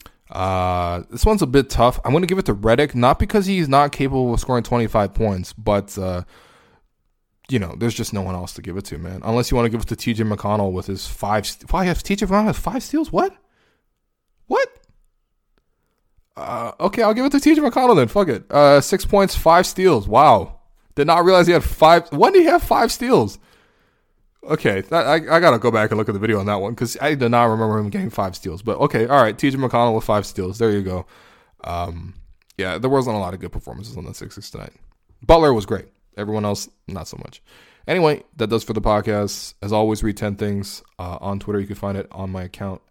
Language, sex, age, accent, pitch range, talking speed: English, male, 20-39, American, 100-145 Hz, 230 wpm